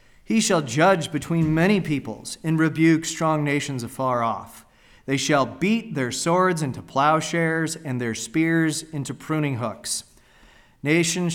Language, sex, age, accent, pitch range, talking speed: English, male, 40-59, American, 125-155 Hz, 135 wpm